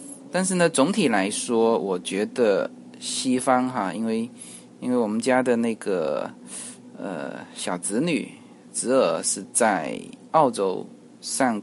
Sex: male